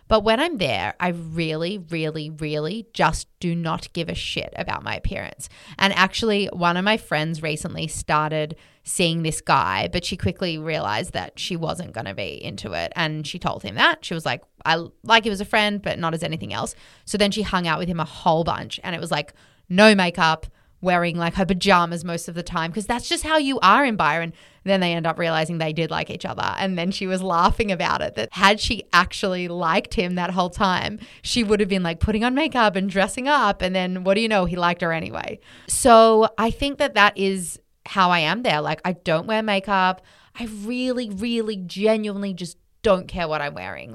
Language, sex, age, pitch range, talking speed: English, female, 20-39, 165-210 Hz, 225 wpm